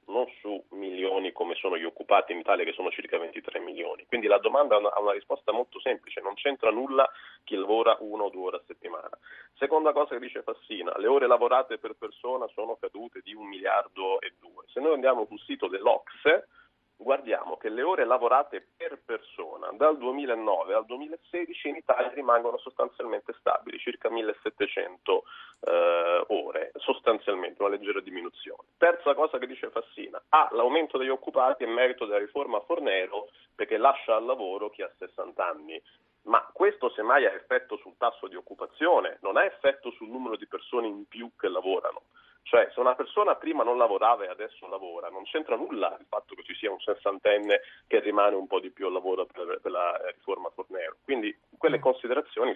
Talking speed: 180 wpm